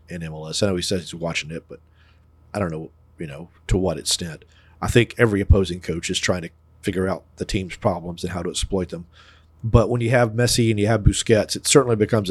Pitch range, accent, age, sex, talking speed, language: 85-120 Hz, American, 40-59, male, 235 wpm, English